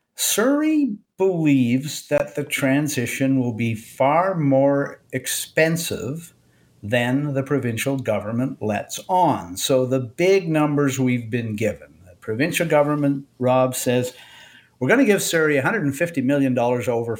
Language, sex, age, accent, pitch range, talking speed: English, male, 50-69, American, 115-160 Hz, 125 wpm